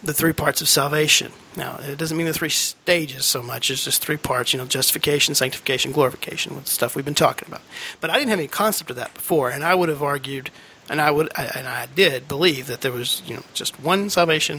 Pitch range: 145-175 Hz